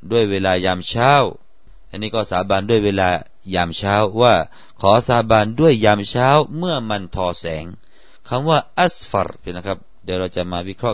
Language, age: Thai, 30-49